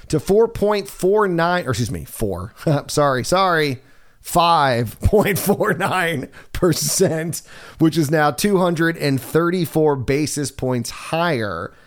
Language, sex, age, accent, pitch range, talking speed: English, male, 30-49, American, 120-160 Hz, 85 wpm